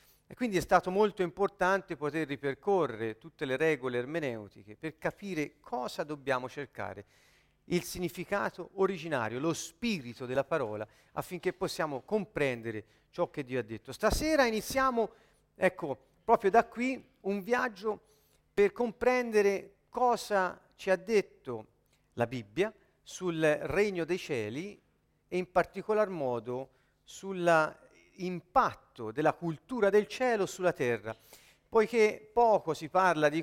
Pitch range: 145-195 Hz